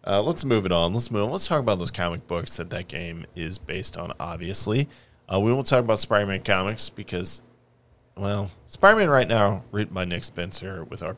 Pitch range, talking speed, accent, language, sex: 85-115 Hz, 210 wpm, American, English, male